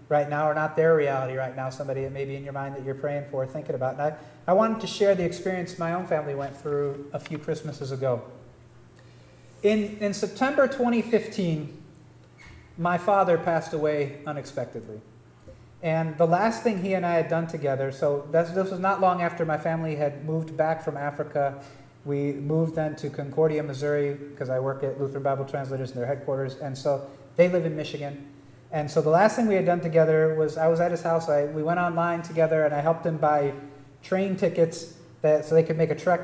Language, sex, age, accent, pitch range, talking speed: English, male, 40-59, American, 140-165 Hz, 205 wpm